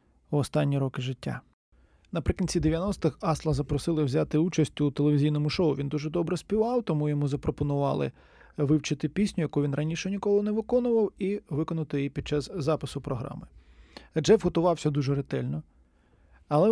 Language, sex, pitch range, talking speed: Ukrainian, male, 140-170 Hz, 145 wpm